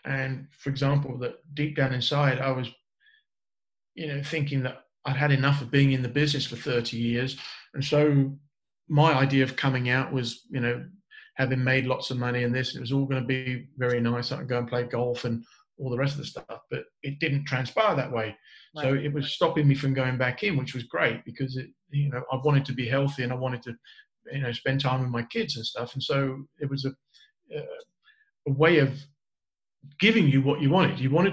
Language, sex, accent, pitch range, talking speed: English, male, British, 130-150 Hz, 220 wpm